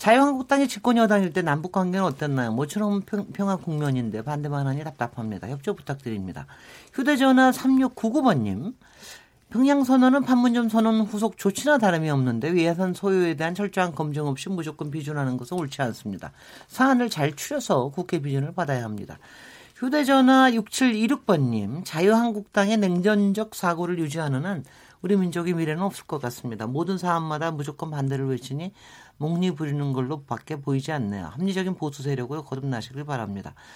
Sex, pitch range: male, 140-210 Hz